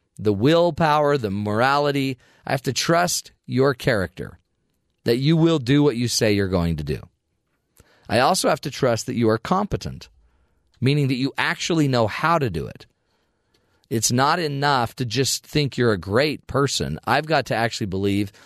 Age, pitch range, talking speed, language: 40-59, 110-145 Hz, 175 wpm, English